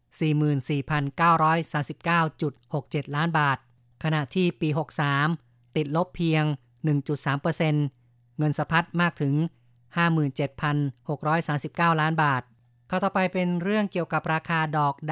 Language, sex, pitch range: Thai, female, 140-160 Hz